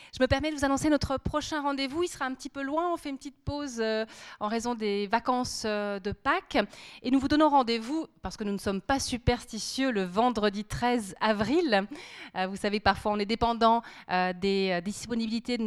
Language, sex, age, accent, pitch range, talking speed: French, female, 30-49, French, 215-270 Hz, 215 wpm